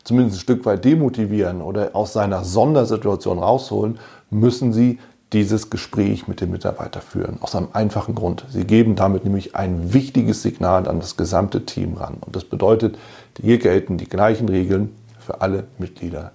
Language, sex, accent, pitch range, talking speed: German, male, German, 95-120 Hz, 165 wpm